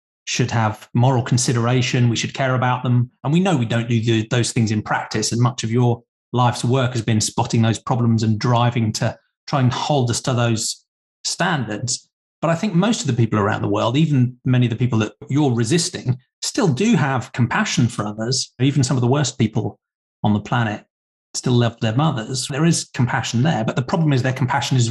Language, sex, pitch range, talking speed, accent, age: English, male, 110-135 Hz, 210 wpm, British, 30-49